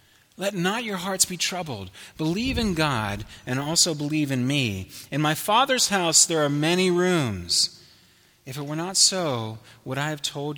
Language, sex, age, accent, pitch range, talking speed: English, male, 30-49, American, 100-140 Hz, 175 wpm